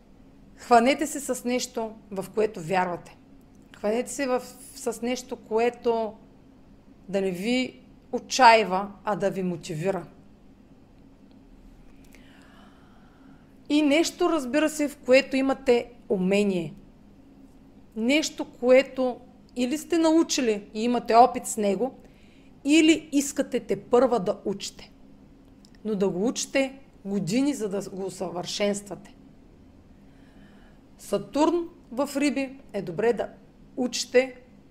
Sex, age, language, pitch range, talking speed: female, 40-59, Bulgarian, 210-270 Hz, 105 wpm